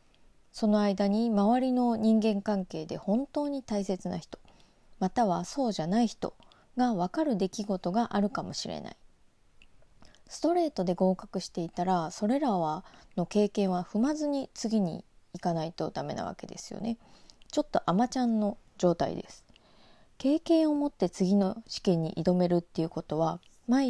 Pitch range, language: 180-245 Hz, Japanese